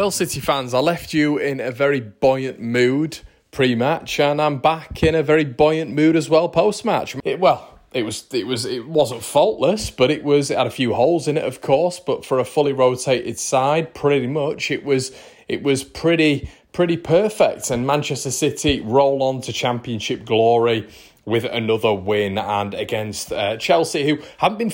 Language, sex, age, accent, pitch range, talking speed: English, male, 30-49, British, 105-140 Hz, 185 wpm